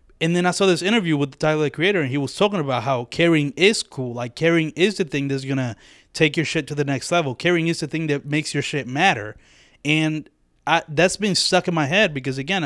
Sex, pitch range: male, 125-155 Hz